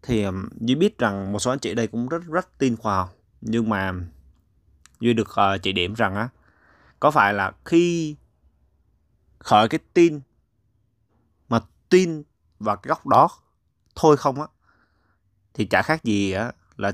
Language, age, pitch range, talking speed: Vietnamese, 20-39, 90-120 Hz, 165 wpm